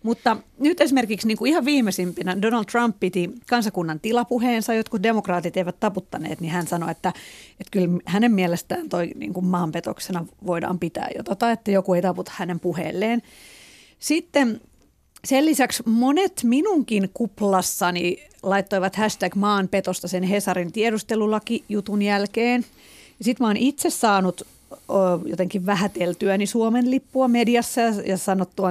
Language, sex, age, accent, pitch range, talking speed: Finnish, female, 40-59, native, 185-235 Hz, 135 wpm